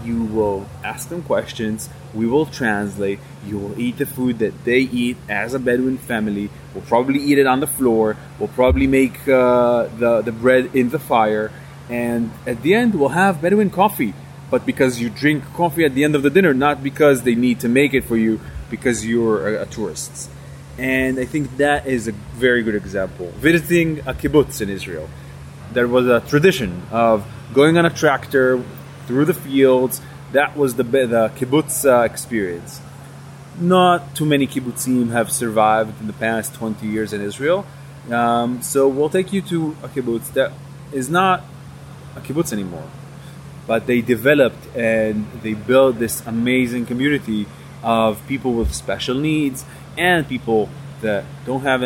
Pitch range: 115-145 Hz